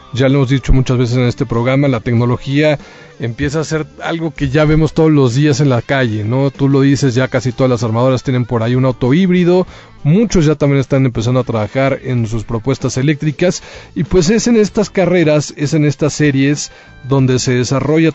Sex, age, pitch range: male, 40-59, 130-155 Hz